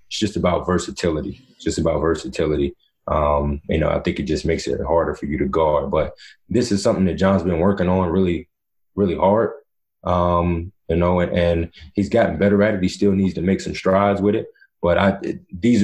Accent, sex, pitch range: American, male, 85-105 Hz